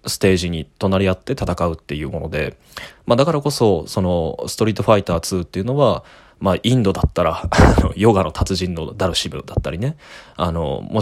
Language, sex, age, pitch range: Japanese, male, 20-39, 90-120 Hz